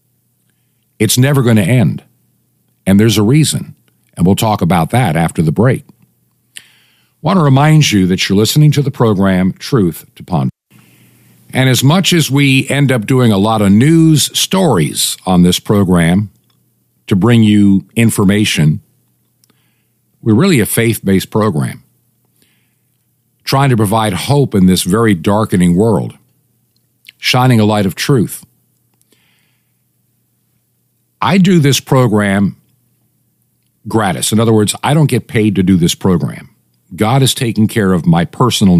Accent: American